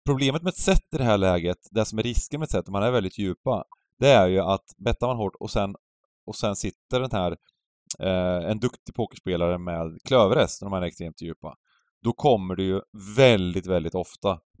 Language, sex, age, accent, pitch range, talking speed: English, male, 30-49, Swedish, 90-130 Hz, 205 wpm